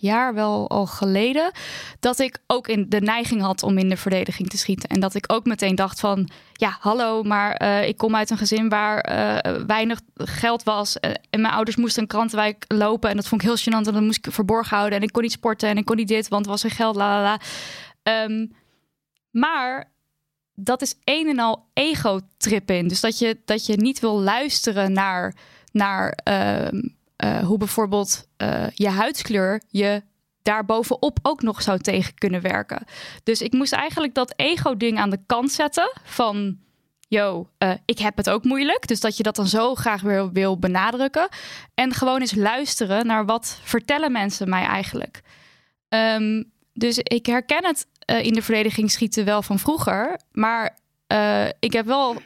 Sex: female